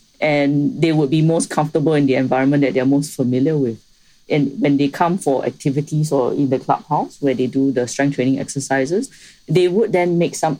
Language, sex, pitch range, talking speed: English, female, 135-160 Hz, 205 wpm